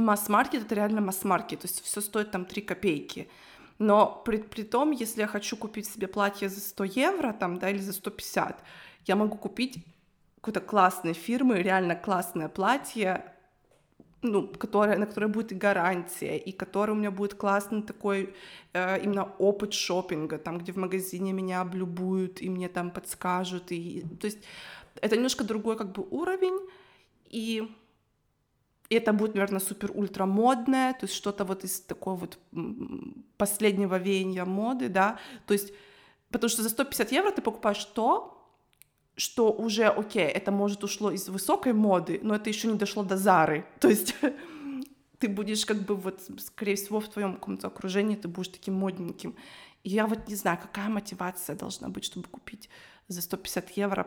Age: 20-39